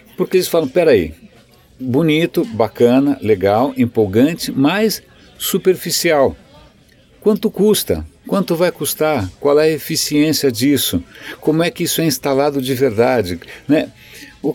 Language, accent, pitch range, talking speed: Portuguese, Brazilian, 115-165 Hz, 125 wpm